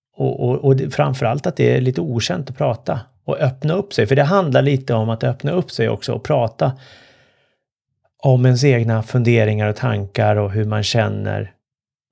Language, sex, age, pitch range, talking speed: Swedish, male, 30-49, 115-145 Hz, 185 wpm